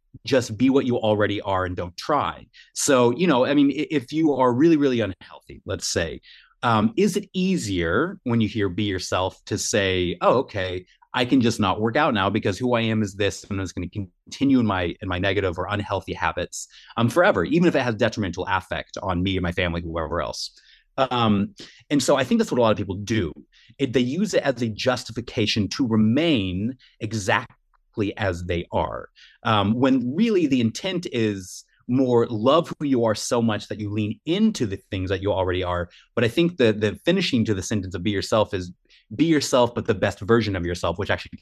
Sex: male